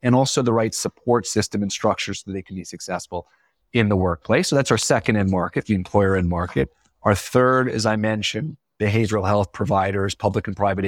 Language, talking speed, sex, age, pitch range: English, 210 wpm, male, 30-49, 95-120 Hz